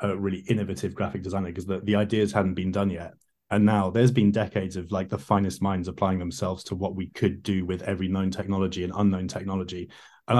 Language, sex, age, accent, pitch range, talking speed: English, male, 20-39, British, 95-105 Hz, 220 wpm